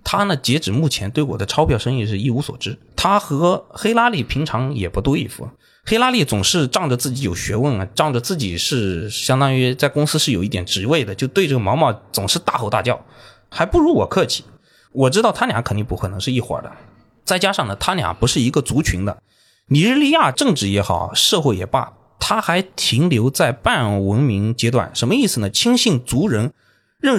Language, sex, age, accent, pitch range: Chinese, male, 20-39, native, 105-145 Hz